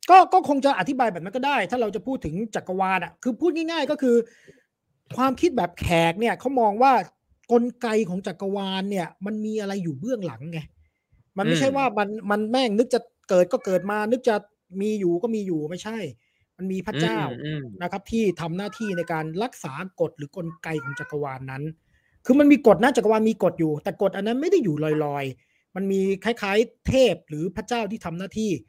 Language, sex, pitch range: English, male, 165-235 Hz